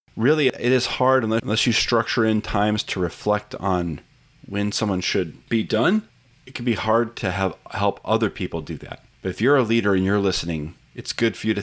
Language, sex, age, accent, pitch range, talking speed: English, male, 30-49, American, 90-115 Hz, 205 wpm